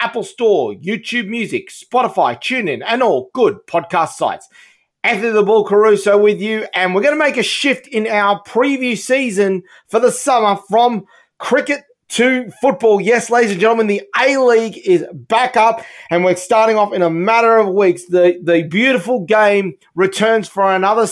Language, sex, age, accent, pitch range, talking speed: English, male, 30-49, Australian, 190-230 Hz, 170 wpm